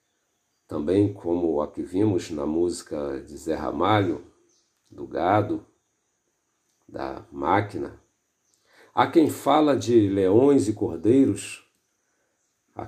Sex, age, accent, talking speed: male, 50-69, Brazilian, 100 wpm